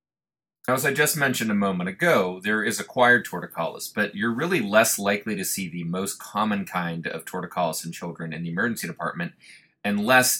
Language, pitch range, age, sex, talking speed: English, 85-110 Hz, 30-49, male, 185 wpm